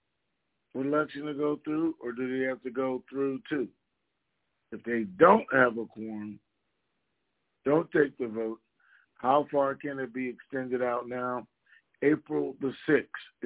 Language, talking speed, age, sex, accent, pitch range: English, 145 wpm, 50-69, male, American, 120-150 Hz